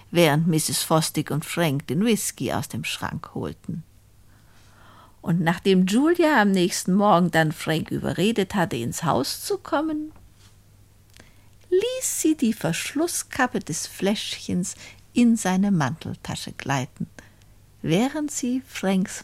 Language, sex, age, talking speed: German, female, 60-79, 120 wpm